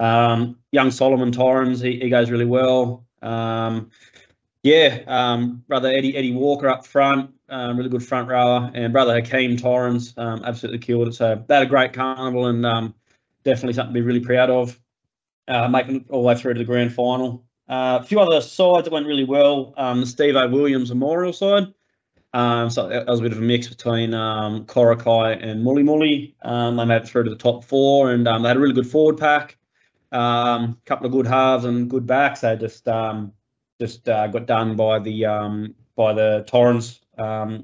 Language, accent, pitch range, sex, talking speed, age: English, Australian, 115-135 Hz, male, 205 wpm, 20-39